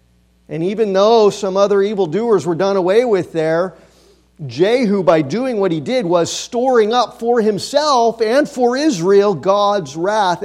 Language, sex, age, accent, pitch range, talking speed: English, male, 40-59, American, 165-220 Hz, 155 wpm